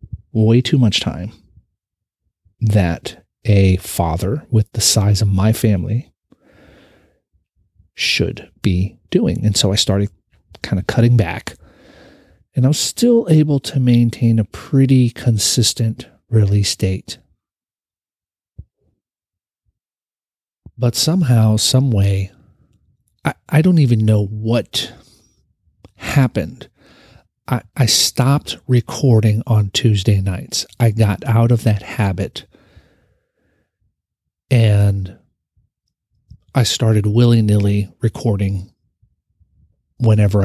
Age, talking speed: 40-59, 95 wpm